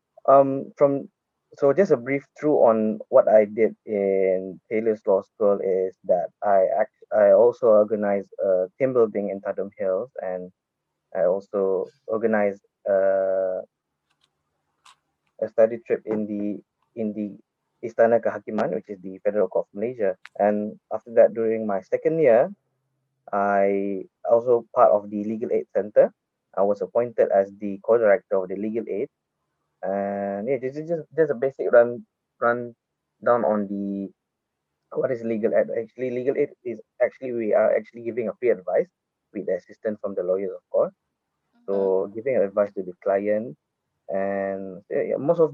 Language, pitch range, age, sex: English, 100-135 Hz, 20-39, male